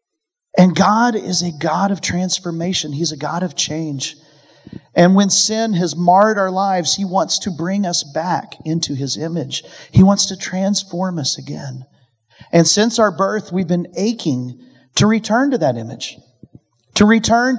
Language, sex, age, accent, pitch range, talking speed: English, male, 40-59, American, 150-200 Hz, 165 wpm